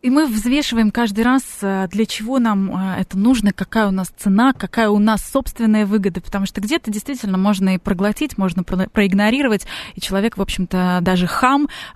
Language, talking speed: Russian, 170 wpm